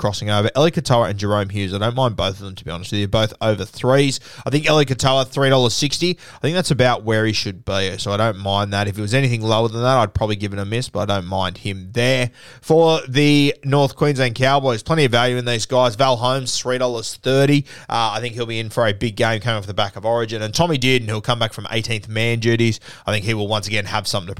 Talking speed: 270 wpm